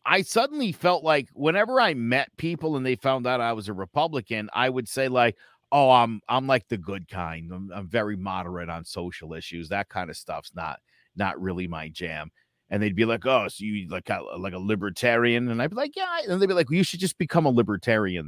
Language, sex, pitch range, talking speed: English, male, 110-165 Hz, 230 wpm